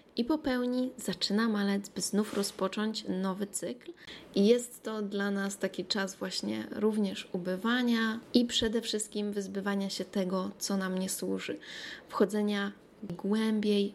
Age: 20-39